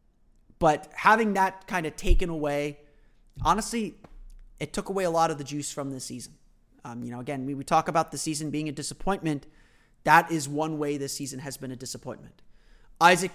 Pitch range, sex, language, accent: 135-165 Hz, male, English, American